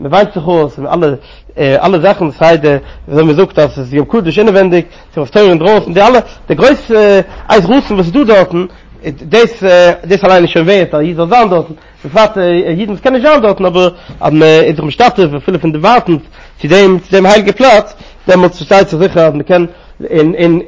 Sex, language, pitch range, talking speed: male, English, 155-195 Hz, 175 wpm